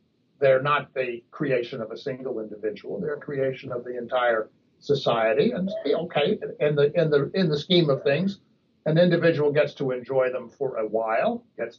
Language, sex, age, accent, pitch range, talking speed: English, male, 60-79, American, 120-165 Hz, 185 wpm